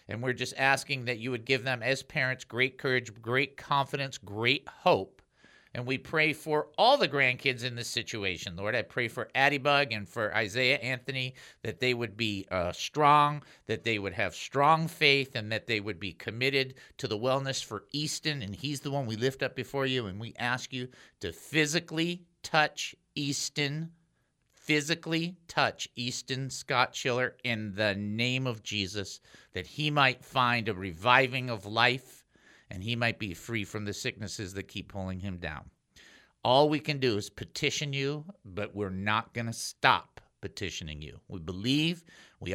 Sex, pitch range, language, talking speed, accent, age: male, 105-140 Hz, English, 180 wpm, American, 50-69